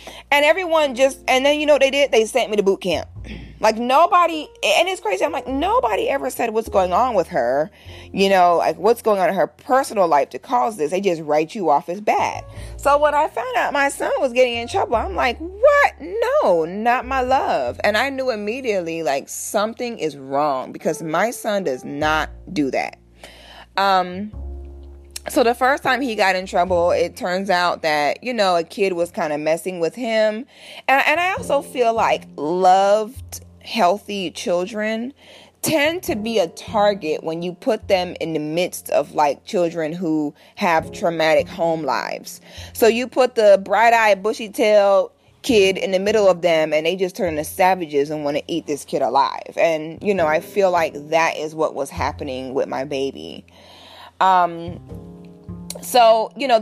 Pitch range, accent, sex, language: 160-235 Hz, American, female, English